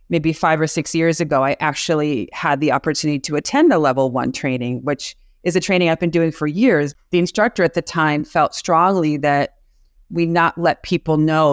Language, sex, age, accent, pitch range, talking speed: English, female, 30-49, American, 140-170 Hz, 205 wpm